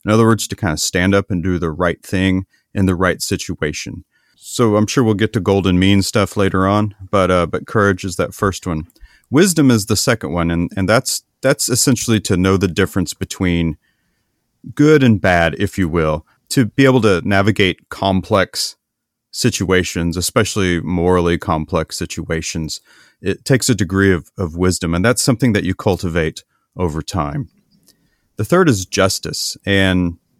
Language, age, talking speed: English, 30-49, 175 wpm